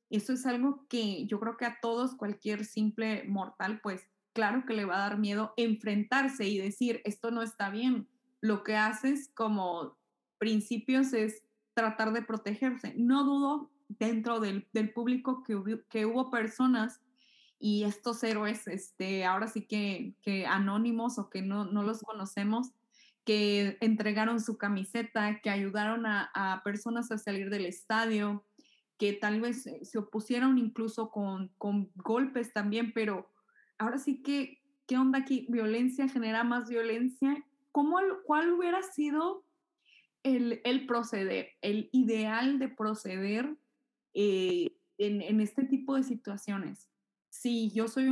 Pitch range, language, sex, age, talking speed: 210-255 Hz, Spanish, female, 20-39, 145 wpm